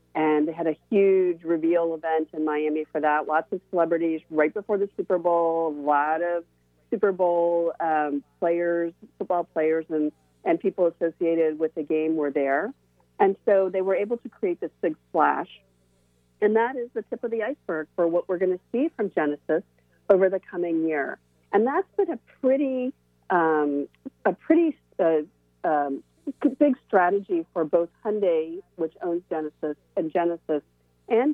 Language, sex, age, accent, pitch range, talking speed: English, female, 40-59, American, 150-185 Hz, 170 wpm